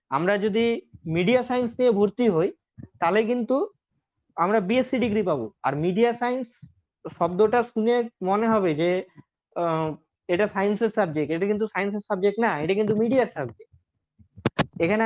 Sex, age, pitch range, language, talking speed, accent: male, 20-39, 170-215 Hz, Bengali, 130 wpm, native